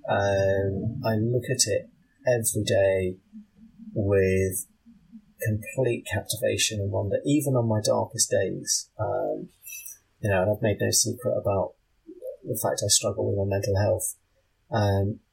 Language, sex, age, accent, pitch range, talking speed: English, male, 30-49, British, 100-125 Hz, 135 wpm